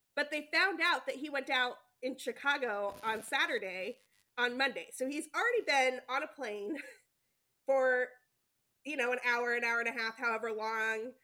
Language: English